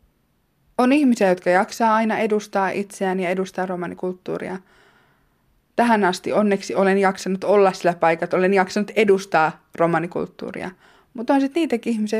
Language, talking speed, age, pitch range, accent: Finnish, 135 wpm, 20-39, 185-235 Hz, native